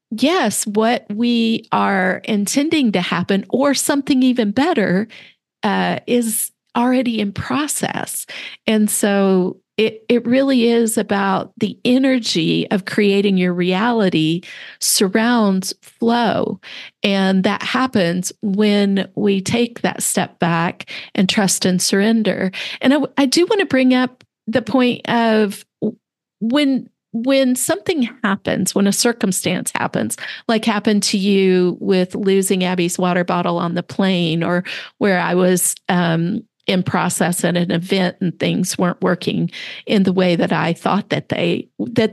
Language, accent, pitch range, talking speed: English, American, 185-235 Hz, 140 wpm